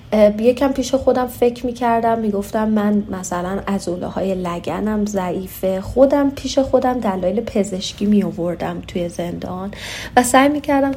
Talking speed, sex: 150 wpm, female